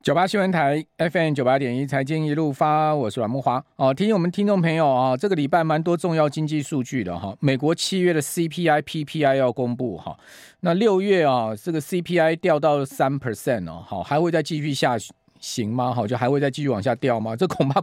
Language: Chinese